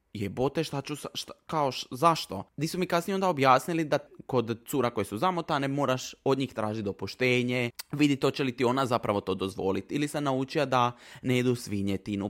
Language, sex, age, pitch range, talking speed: Croatian, male, 20-39, 115-140 Hz, 200 wpm